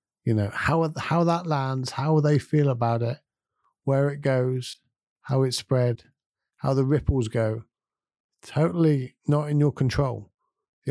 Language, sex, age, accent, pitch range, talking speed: English, male, 50-69, British, 120-150 Hz, 150 wpm